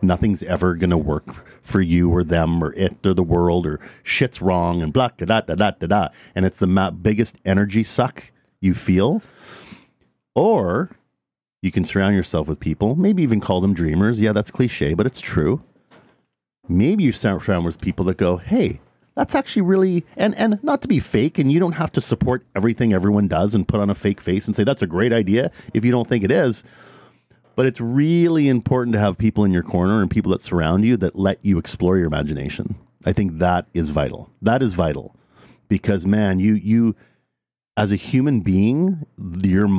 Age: 40-59